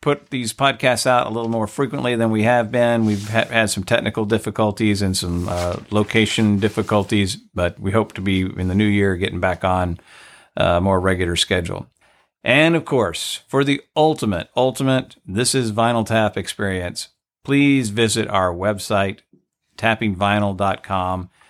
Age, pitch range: 50-69, 100-120 Hz